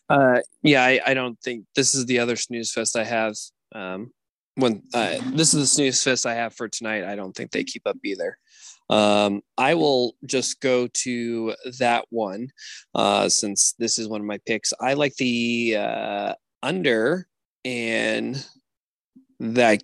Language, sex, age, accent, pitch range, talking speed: English, male, 20-39, American, 110-130 Hz, 170 wpm